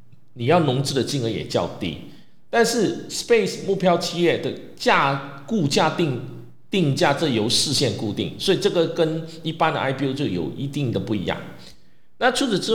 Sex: male